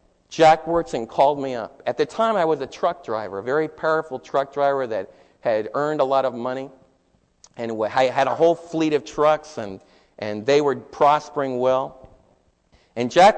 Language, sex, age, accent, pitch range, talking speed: English, male, 50-69, American, 115-155 Hz, 180 wpm